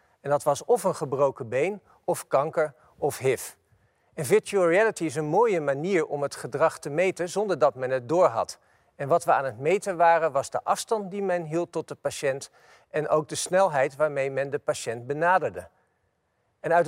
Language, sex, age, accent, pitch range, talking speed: Dutch, male, 50-69, Dutch, 135-180 Hz, 200 wpm